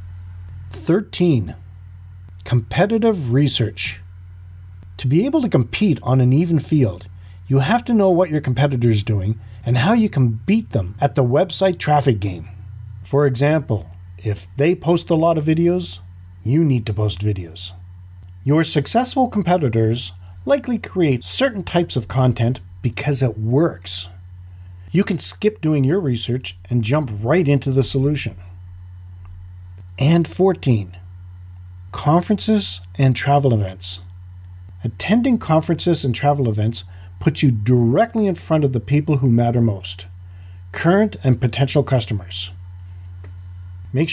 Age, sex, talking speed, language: 40-59, male, 130 wpm, English